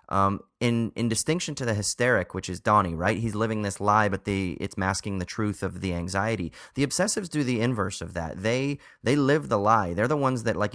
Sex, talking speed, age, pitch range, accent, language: male, 230 wpm, 30-49, 95-125 Hz, American, English